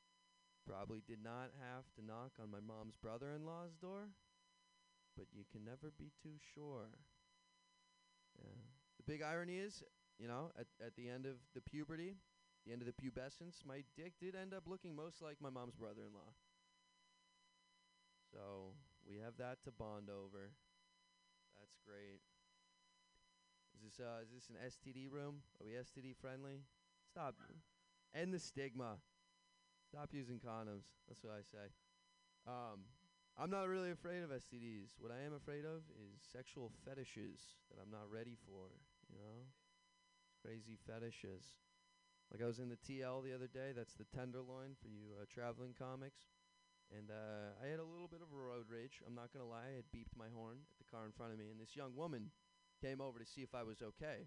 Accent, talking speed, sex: American, 180 wpm, male